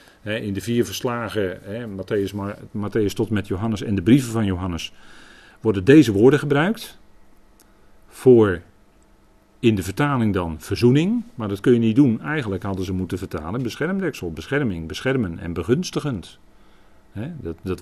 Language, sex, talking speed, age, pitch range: Dutch, male, 140 wpm, 40-59, 95-120 Hz